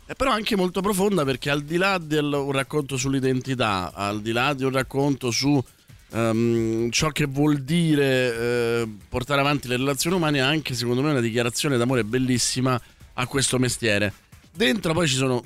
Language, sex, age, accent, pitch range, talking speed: Italian, male, 30-49, native, 105-135 Hz, 180 wpm